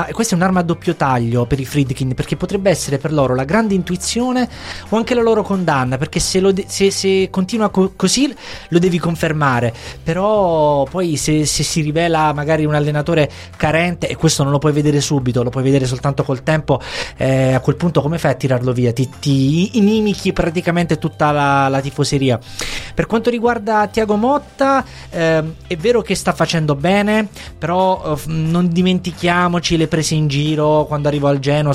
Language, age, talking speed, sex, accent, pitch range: Italian, 20-39, 185 wpm, male, native, 145-180 Hz